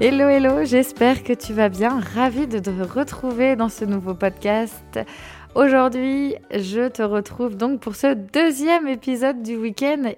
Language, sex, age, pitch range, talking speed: French, female, 20-39, 200-250 Hz, 155 wpm